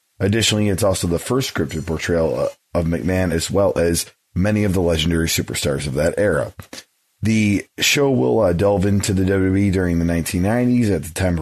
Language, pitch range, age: English, 85-105 Hz, 30-49